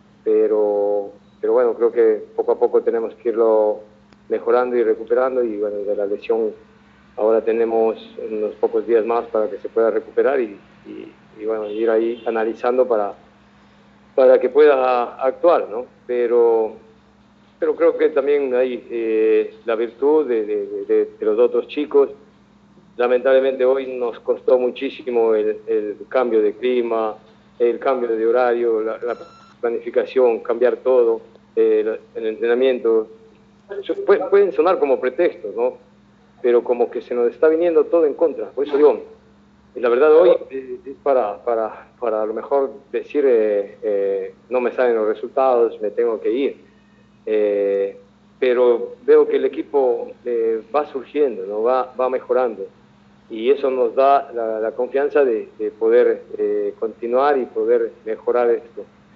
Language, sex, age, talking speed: Spanish, male, 50-69, 150 wpm